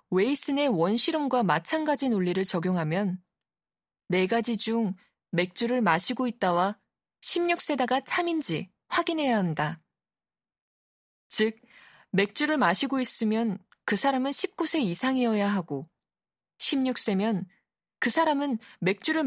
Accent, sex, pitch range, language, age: native, female, 185-265 Hz, Korean, 20-39